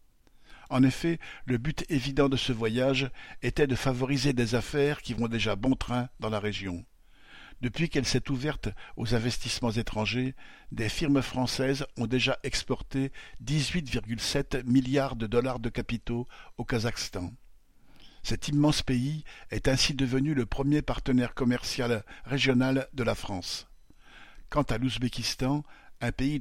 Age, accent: 60-79, French